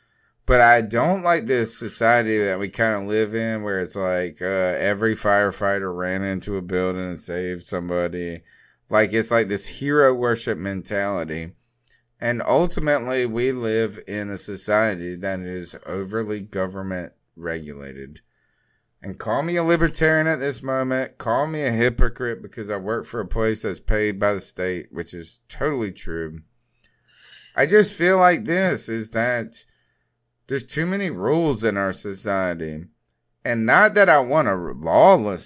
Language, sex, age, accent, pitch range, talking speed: English, male, 30-49, American, 95-135 Hz, 155 wpm